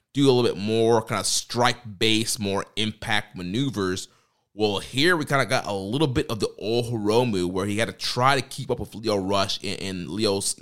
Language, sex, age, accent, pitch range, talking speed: English, male, 30-49, American, 95-115 Hz, 225 wpm